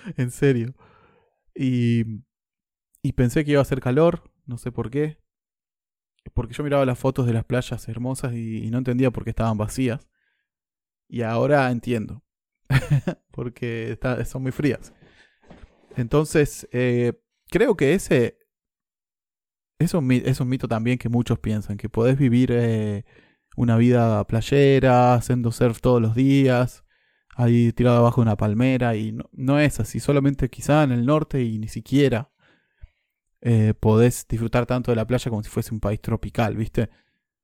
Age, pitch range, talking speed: 20-39, 115-130 Hz, 155 wpm